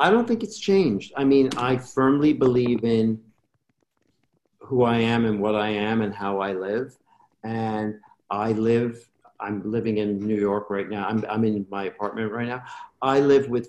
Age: 50-69